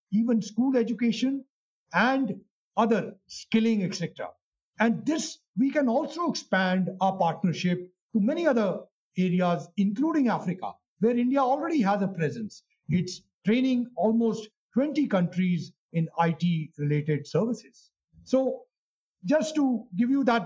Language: English